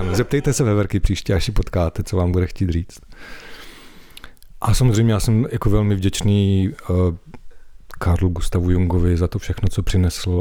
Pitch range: 95-110 Hz